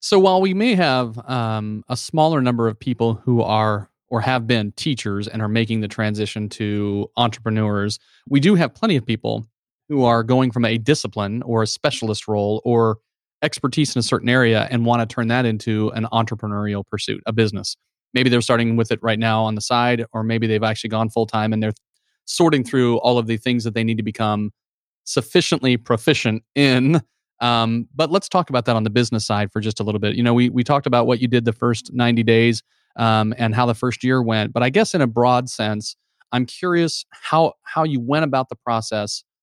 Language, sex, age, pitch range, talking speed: English, male, 30-49, 110-130 Hz, 215 wpm